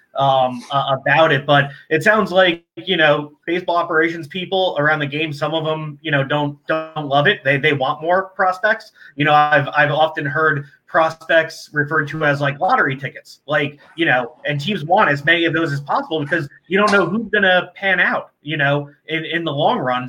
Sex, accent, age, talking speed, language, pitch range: male, American, 30-49, 210 wpm, English, 140-165 Hz